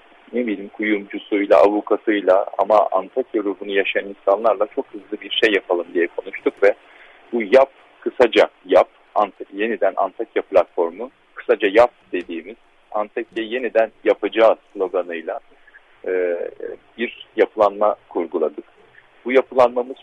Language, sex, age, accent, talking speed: Turkish, male, 40-59, native, 115 wpm